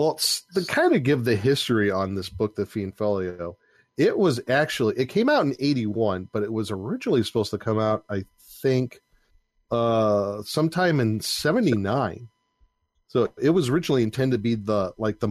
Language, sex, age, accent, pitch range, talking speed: English, male, 40-59, American, 100-120 Hz, 185 wpm